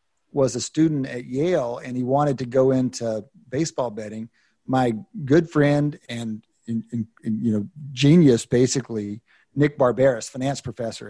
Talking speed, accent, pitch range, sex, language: 145 wpm, American, 125-165 Hz, male, English